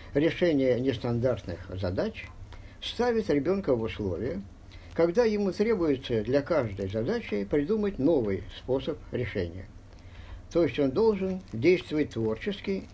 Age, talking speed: 50-69, 105 wpm